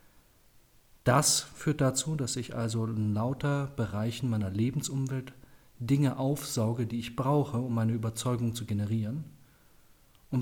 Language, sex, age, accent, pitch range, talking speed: German, male, 40-59, German, 100-135 Hz, 125 wpm